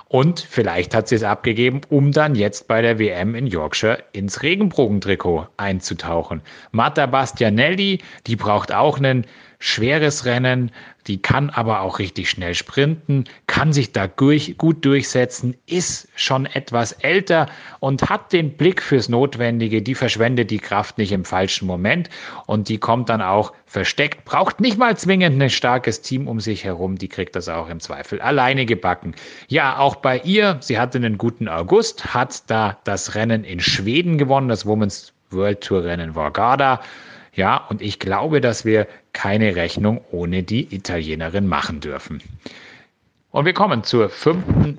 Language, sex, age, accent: German, male, 30-49, German